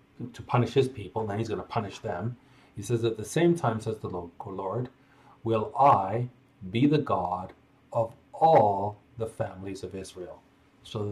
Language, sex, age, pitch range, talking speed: English, male, 40-59, 110-135 Hz, 180 wpm